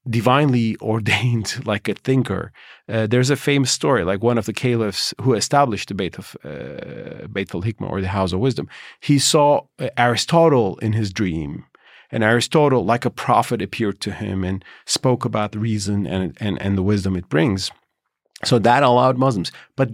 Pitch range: 100-130 Hz